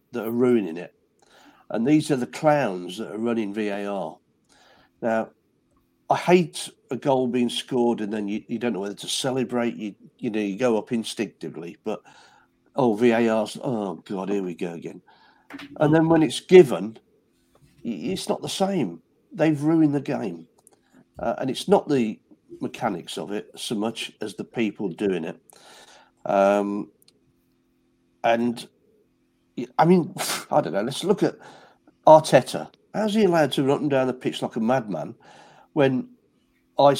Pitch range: 110-145 Hz